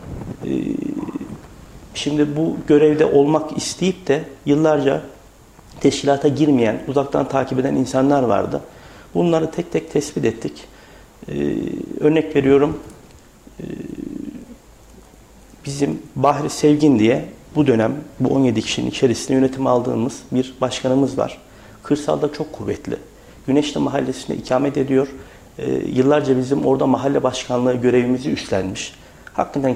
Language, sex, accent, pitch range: Turkish, male, native, 125-145 Hz